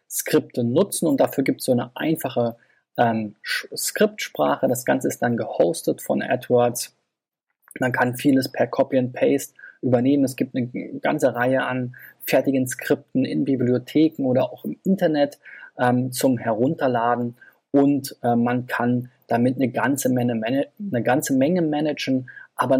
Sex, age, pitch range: male, 20-39, 115-130 Hz